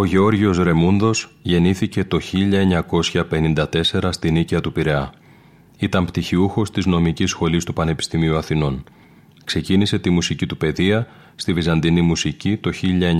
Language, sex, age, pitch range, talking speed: Greek, male, 30-49, 85-100 Hz, 125 wpm